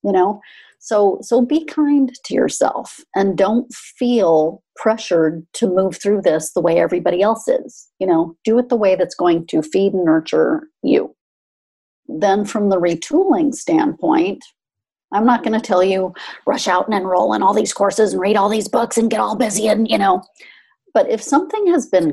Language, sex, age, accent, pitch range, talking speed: English, female, 40-59, American, 190-270 Hz, 190 wpm